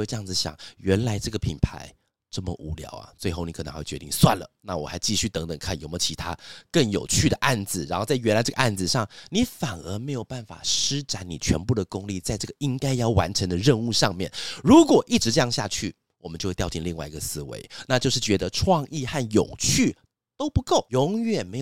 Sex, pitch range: male, 95-140 Hz